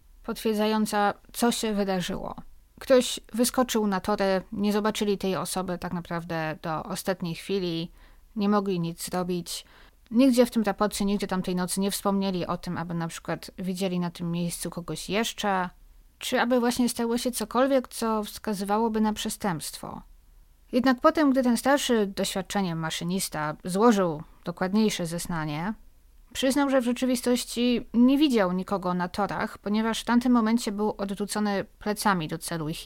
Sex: female